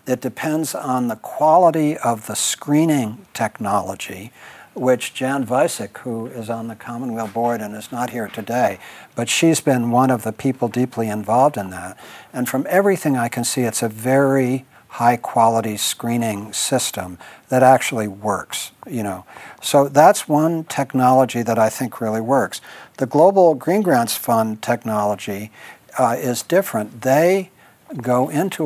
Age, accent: 60-79, American